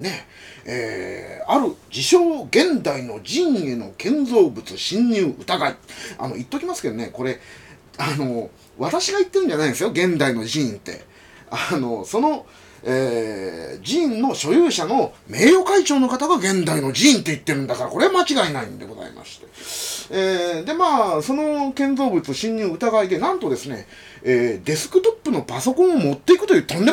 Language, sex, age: Japanese, male, 30-49